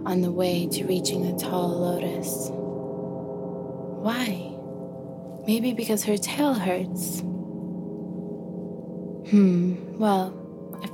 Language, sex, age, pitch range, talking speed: English, female, 20-39, 165-205 Hz, 95 wpm